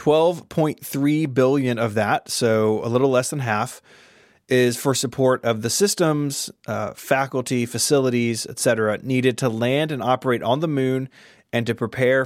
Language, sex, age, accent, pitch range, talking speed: English, male, 20-39, American, 115-140 Hz, 150 wpm